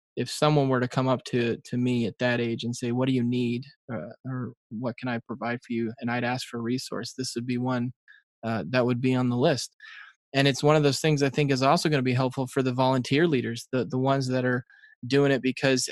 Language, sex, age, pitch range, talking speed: English, male, 20-39, 125-145 Hz, 260 wpm